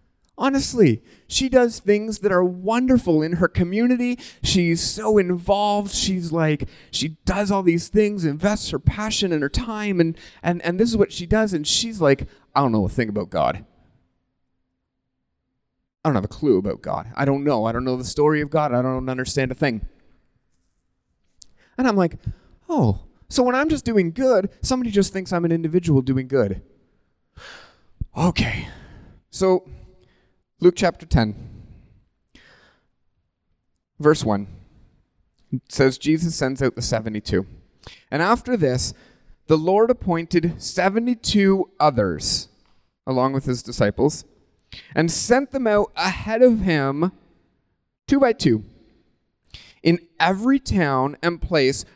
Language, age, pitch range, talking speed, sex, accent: English, 30-49, 130-200 Hz, 145 wpm, male, American